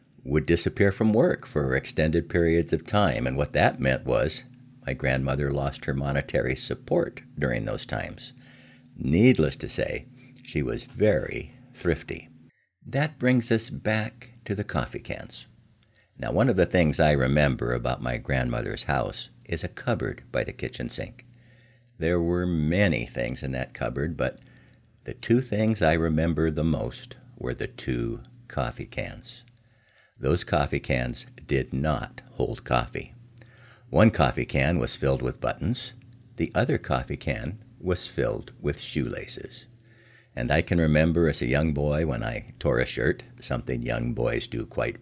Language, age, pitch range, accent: English, 60-79, 75-120 Hz, American